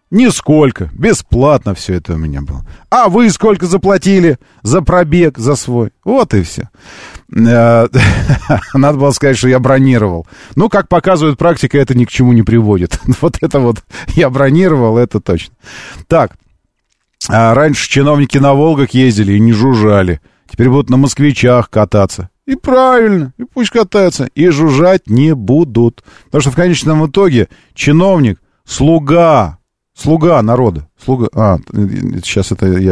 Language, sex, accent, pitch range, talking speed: Russian, male, native, 95-150 Hz, 140 wpm